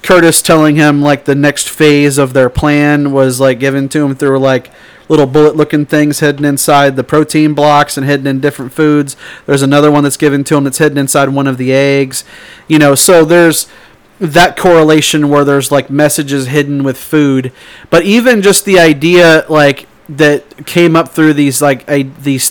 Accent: American